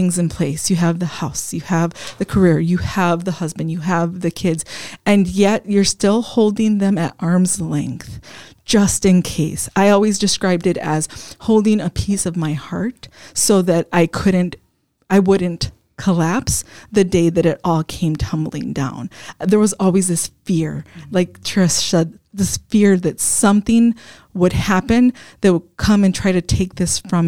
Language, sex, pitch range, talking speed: English, female, 170-200 Hz, 175 wpm